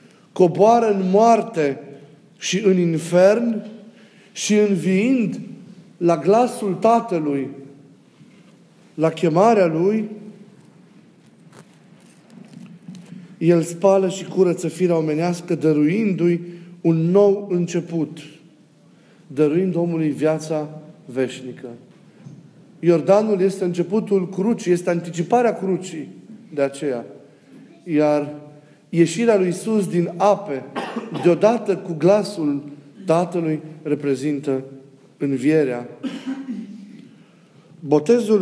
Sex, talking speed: male, 80 wpm